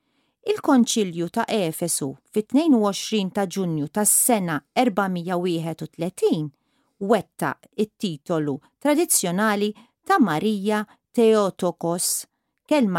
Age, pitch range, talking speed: 40-59, 175-255 Hz, 80 wpm